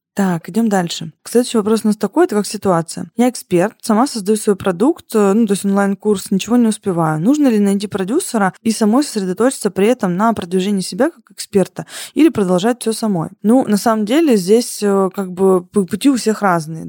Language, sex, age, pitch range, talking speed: Russian, female, 20-39, 185-225 Hz, 190 wpm